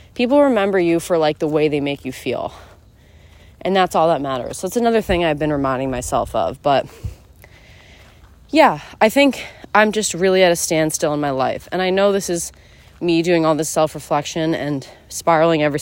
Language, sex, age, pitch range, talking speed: English, female, 20-39, 140-180 Hz, 195 wpm